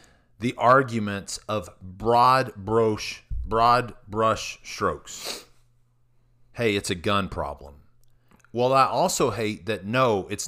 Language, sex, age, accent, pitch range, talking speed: English, male, 40-59, American, 110-135 Hz, 110 wpm